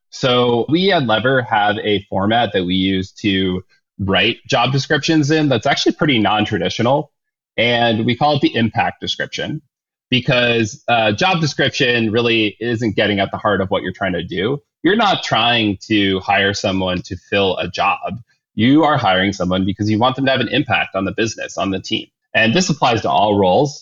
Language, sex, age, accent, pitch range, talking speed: English, male, 20-39, American, 105-145 Hz, 190 wpm